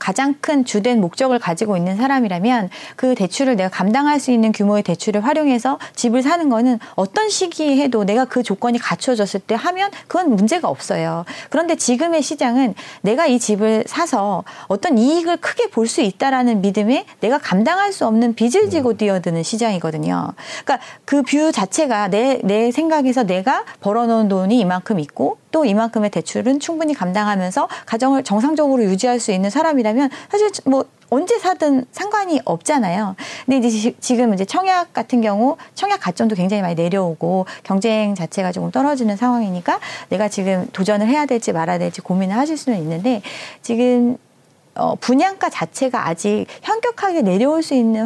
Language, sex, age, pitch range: Korean, female, 40-59, 205-295 Hz